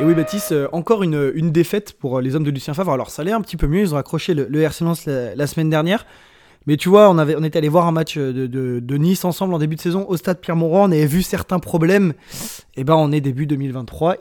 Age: 20-39